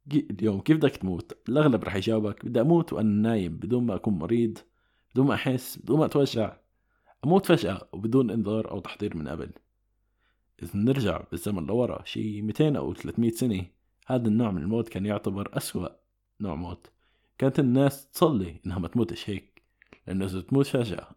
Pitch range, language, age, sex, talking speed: 95-120 Hz, Arabic, 20-39, male, 165 wpm